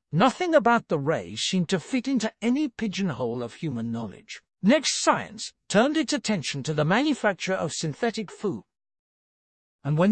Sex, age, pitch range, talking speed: male, 60-79, 135-220 Hz, 155 wpm